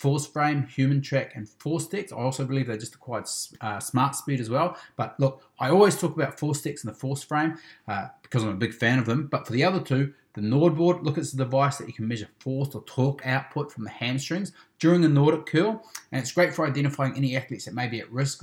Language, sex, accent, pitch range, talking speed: English, male, Australian, 125-155 Hz, 250 wpm